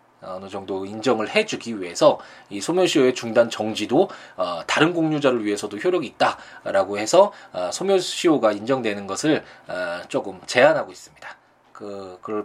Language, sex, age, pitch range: Korean, male, 20-39, 105-150 Hz